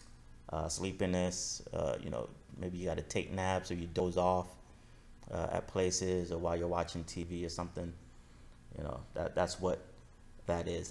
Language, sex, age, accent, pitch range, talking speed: English, male, 30-49, American, 85-95 Hz, 175 wpm